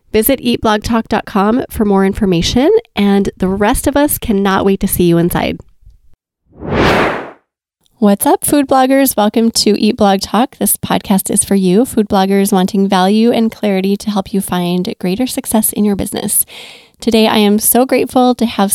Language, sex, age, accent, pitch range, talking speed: English, female, 20-39, American, 195-235 Hz, 165 wpm